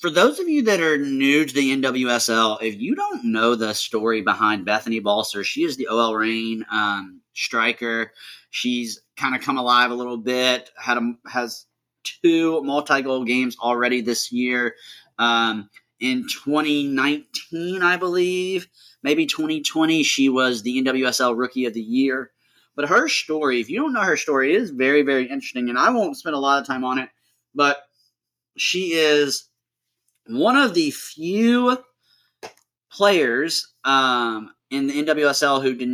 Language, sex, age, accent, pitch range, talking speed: English, male, 30-49, American, 115-145 Hz, 160 wpm